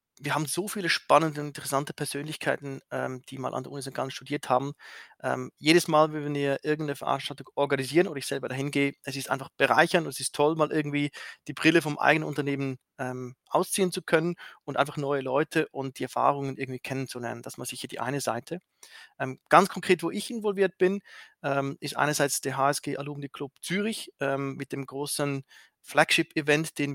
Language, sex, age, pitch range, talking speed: German, male, 30-49, 135-155 Hz, 195 wpm